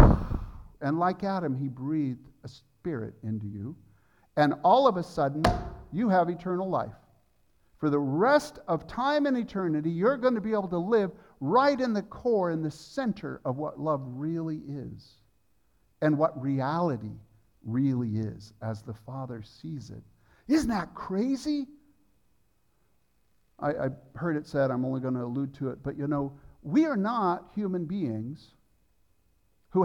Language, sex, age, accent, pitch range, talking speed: English, male, 50-69, American, 130-185 Hz, 155 wpm